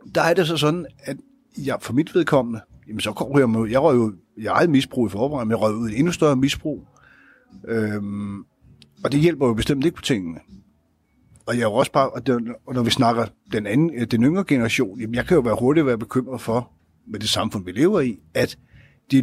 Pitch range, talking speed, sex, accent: 115-150 Hz, 220 wpm, male, native